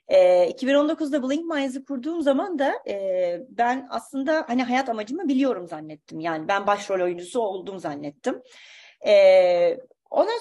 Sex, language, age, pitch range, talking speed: female, Turkish, 30-49, 220-300 Hz, 115 wpm